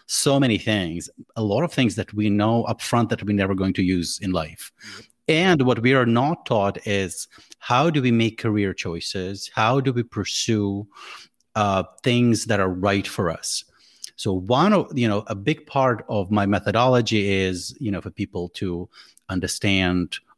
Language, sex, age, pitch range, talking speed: English, male, 30-49, 95-120 Hz, 180 wpm